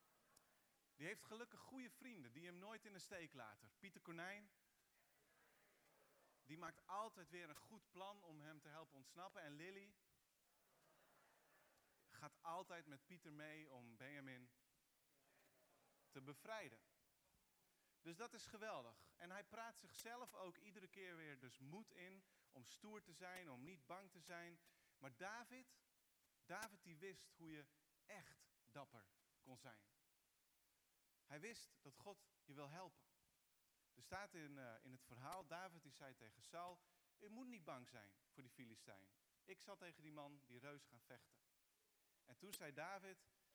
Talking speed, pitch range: 155 wpm, 140-195 Hz